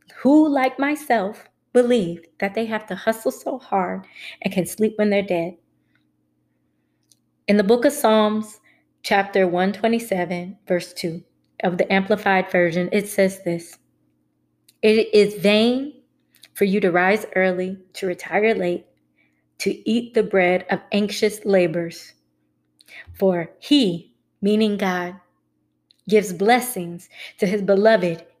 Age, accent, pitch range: 20-39, American, 175-220 Hz